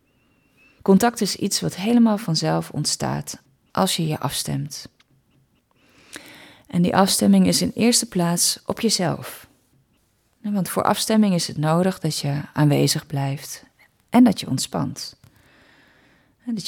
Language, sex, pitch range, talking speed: Dutch, female, 150-200 Hz, 125 wpm